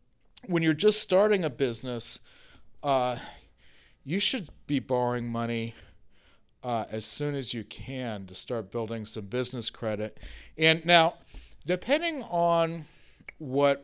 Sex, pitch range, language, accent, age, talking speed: male, 120-145 Hz, English, American, 40-59, 125 wpm